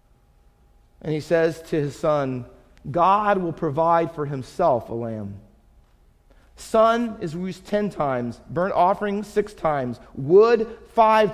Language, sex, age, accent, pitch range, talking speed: English, male, 40-59, American, 155-220 Hz, 125 wpm